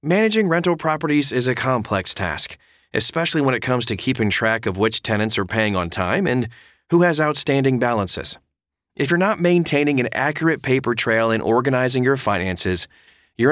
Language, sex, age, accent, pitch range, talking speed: English, male, 30-49, American, 100-150 Hz, 175 wpm